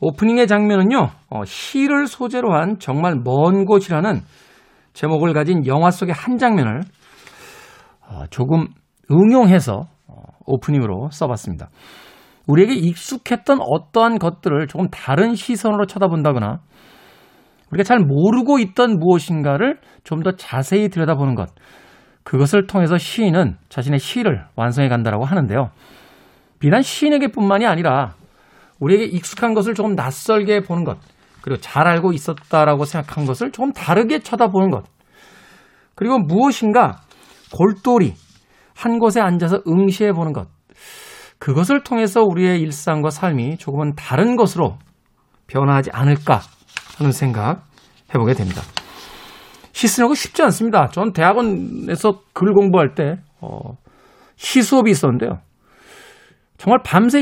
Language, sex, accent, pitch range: Korean, male, native, 145-220 Hz